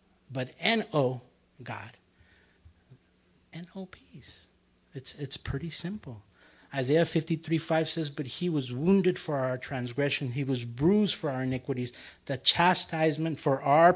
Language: English